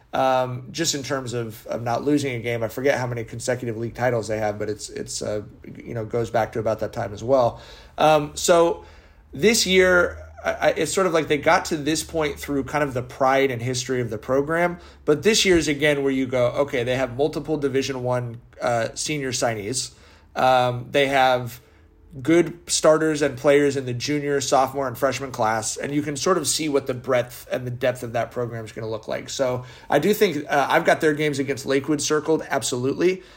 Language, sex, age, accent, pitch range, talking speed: English, male, 30-49, American, 120-150 Hz, 220 wpm